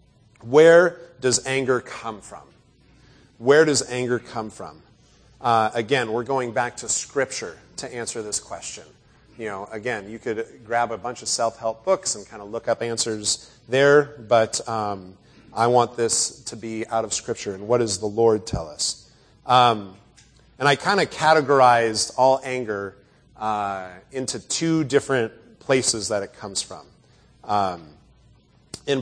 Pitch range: 110-140 Hz